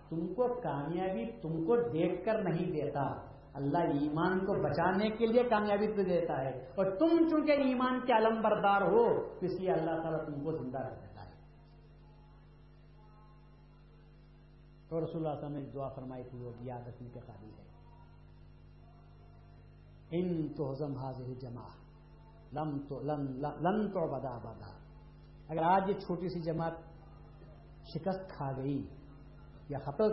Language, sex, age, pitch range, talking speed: Urdu, male, 50-69, 130-180 Hz, 135 wpm